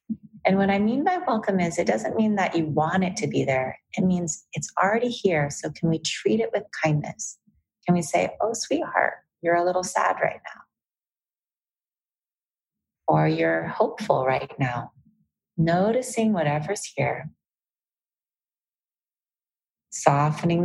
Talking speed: 140 wpm